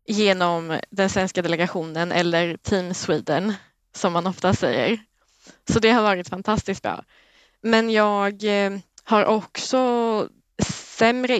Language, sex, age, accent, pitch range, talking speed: Swedish, female, 20-39, native, 190-225 Hz, 115 wpm